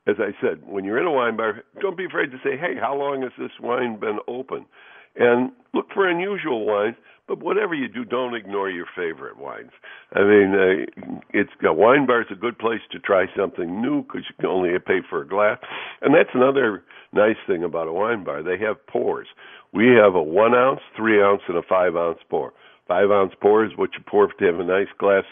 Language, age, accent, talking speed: English, 60-79, American, 220 wpm